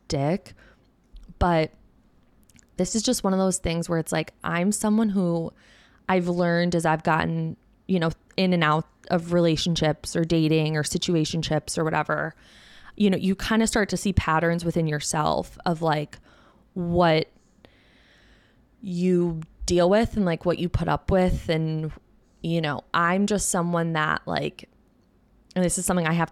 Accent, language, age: American, English, 20-39